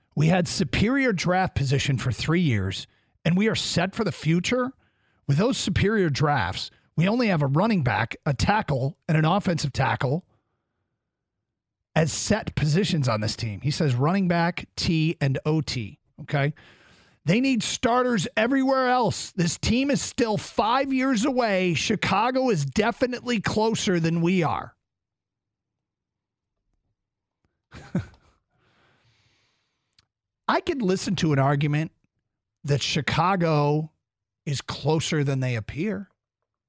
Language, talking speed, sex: English, 125 wpm, male